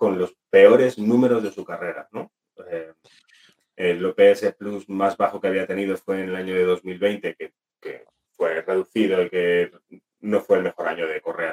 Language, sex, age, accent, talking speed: Spanish, male, 30-49, Spanish, 185 wpm